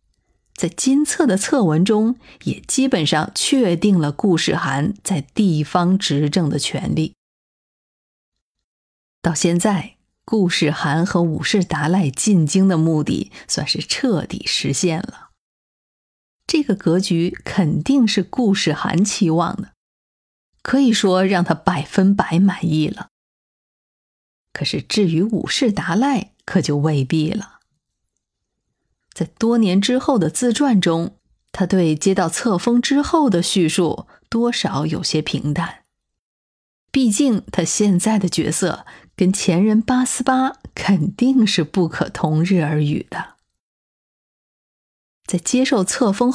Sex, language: female, Chinese